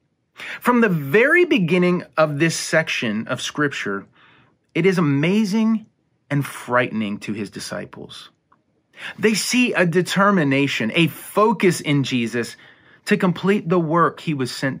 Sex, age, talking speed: male, 30-49, 130 wpm